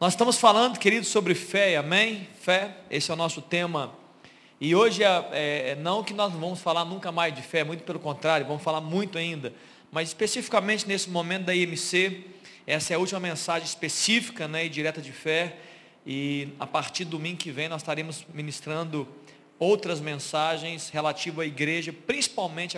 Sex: male